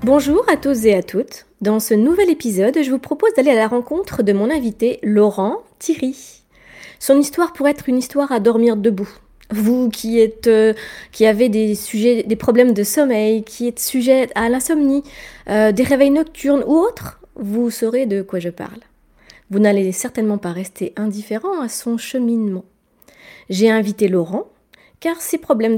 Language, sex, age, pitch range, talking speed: French, female, 20-39, 205-270 Hz, 175 wpm